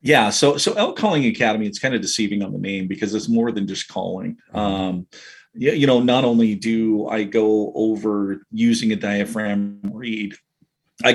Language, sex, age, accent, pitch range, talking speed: English, male, 40-59, American, 100-115 Hz, 185 wpm